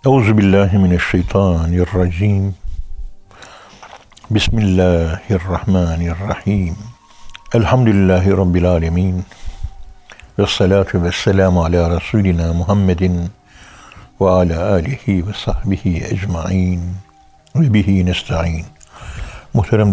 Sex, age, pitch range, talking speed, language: male, 60-79, 80-105 Hz, 60 wpm, Turkish